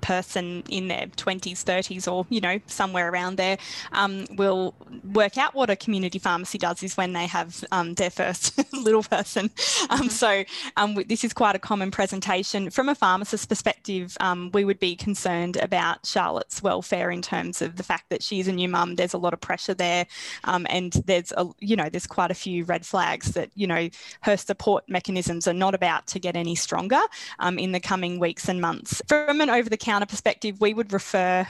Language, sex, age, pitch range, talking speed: English, female, 10-29, 180-205 Hz, 210 wpm